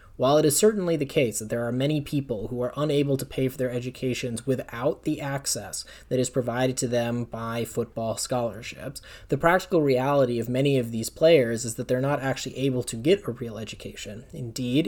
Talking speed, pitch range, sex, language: 200 wpm, 115-140 Hz, male, English